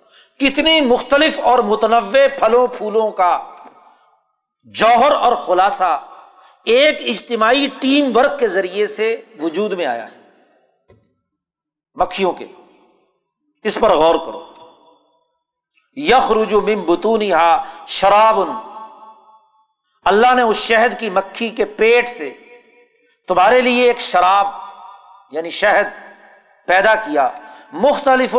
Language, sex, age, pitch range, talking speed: Urdu, male, 50-69, 200-255 Hz, 100 wpm